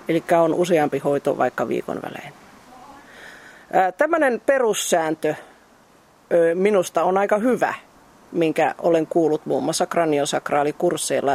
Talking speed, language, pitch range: 105 wpm, Finnish, 150-185 Hz